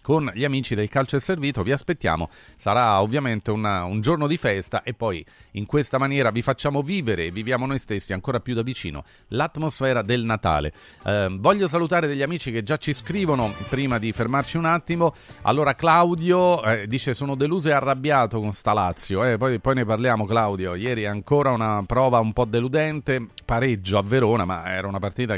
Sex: male